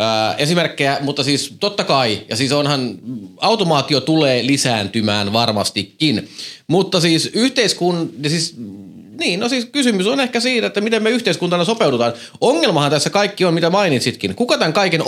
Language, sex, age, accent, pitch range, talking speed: Finnish, male, 30-49, native, 125-170 Hz, 150 wpm